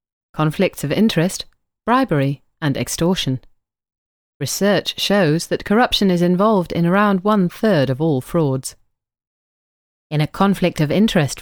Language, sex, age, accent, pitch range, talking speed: English, female, 30-49, British, 120-170 Hz, 110 wpm